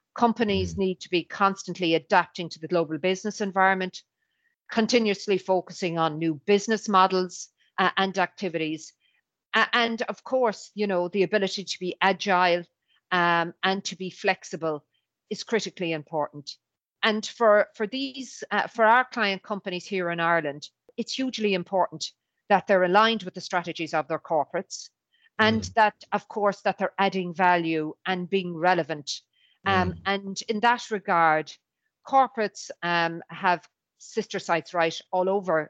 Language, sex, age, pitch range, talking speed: English, female, 50-69, 175-210 Hz, 145 wpm